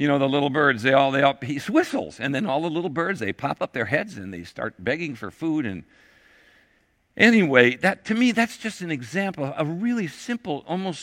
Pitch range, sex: 115-165 Hz, male